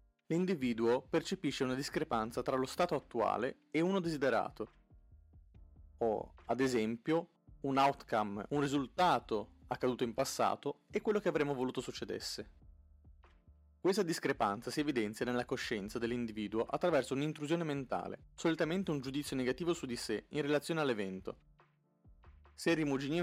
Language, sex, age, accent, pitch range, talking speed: Italian, male, 30-49, native, 115-150 Hz, 130 wpm